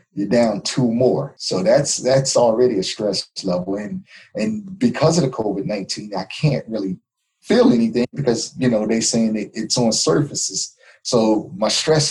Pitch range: 100-135 Hz